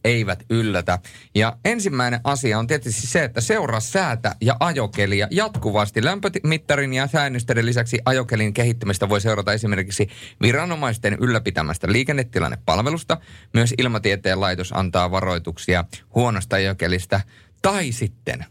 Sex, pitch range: male, 95-120 Hz